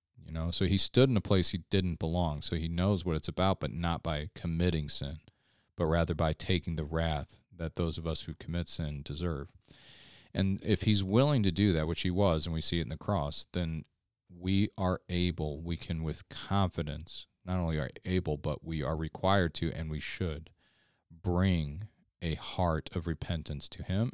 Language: English